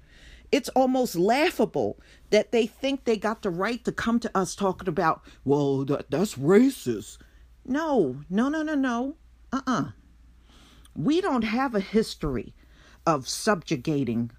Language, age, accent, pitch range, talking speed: English, 50-69, American, 155-220 Hz, 140 wpm